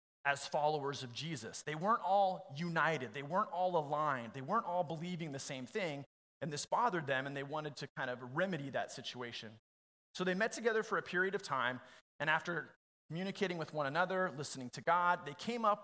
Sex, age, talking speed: male, 30-49, 200 wpm